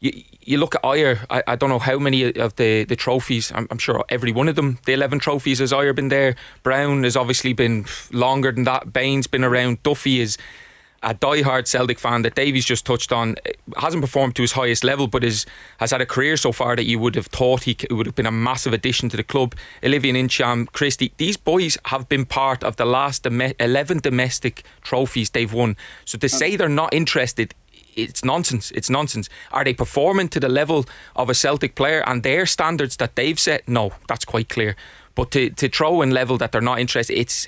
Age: 30-49